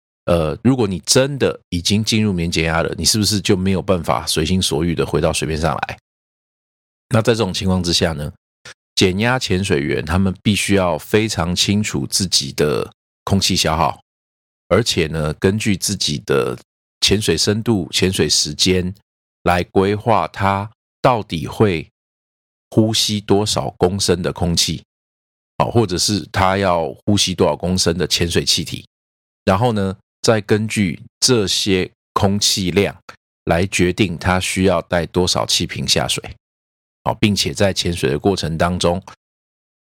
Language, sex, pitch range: Chinese, male, 75-100 Hz